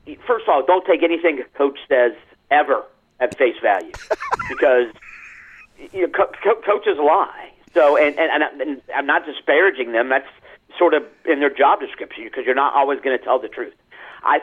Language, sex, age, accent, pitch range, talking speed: English, male, 50-69, American, 130-175 Hz, 185 wpm